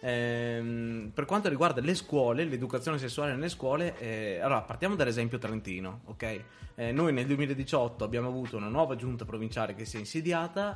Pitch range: 110-130 Hz